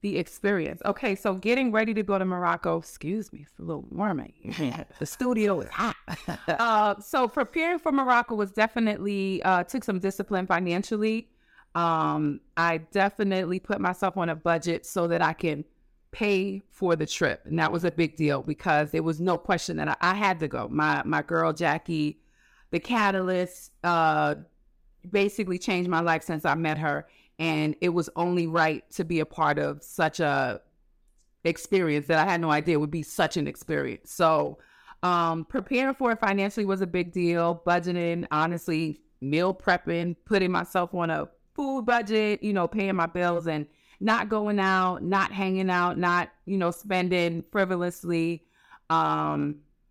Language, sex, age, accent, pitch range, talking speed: English, female, 30-49, American, 165-200 Hz, 170 wpm